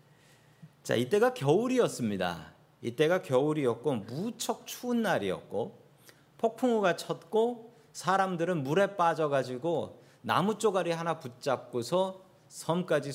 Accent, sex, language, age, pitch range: native, male, Korean, 40-59, 135-185 Hz